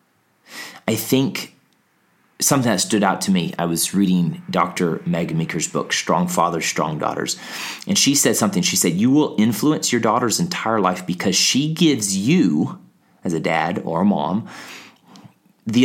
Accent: American